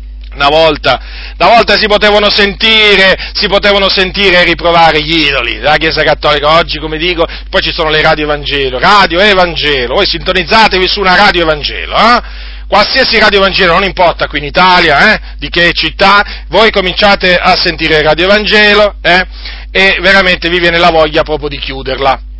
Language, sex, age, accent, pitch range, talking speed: Italian, male, 40-59, native, 150-205 Hz, 170 wpm